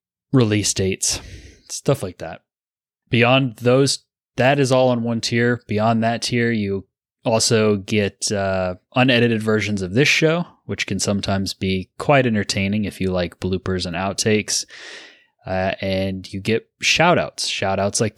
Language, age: English, 20-39